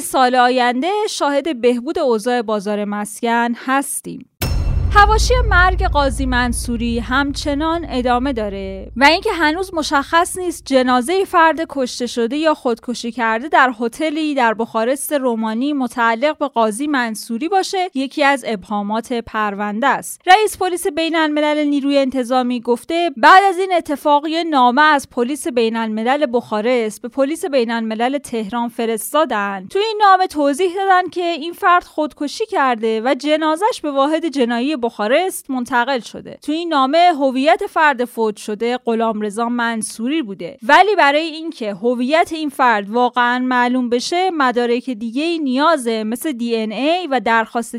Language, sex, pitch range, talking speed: Persian, female, 235-315 Hz, 135 wpm